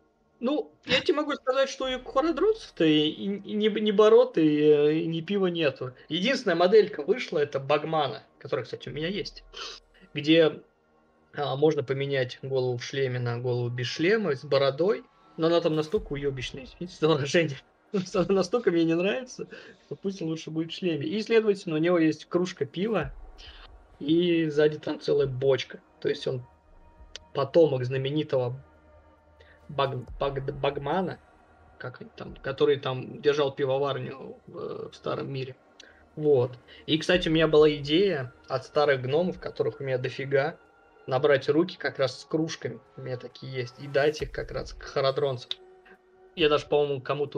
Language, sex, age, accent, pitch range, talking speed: Russian, male, 20-39, native, 135-180 Hz, 150 wpm